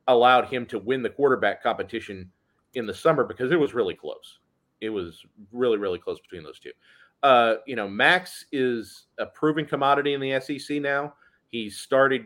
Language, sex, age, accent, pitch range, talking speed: English, male, 30-49, American, 115-140 Hz, 180 wpm